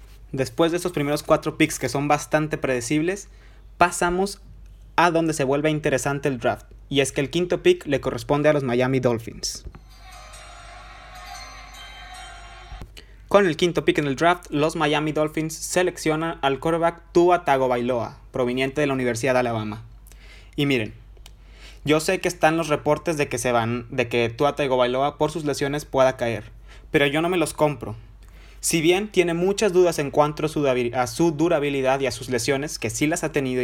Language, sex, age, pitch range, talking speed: Spanish, male, 20-39, 125-160 Hz, 170 wpm